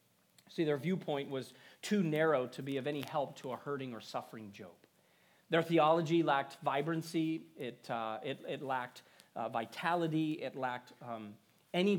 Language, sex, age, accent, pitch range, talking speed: English, male, 40-59, American, 145-205 Hz, 160 wpm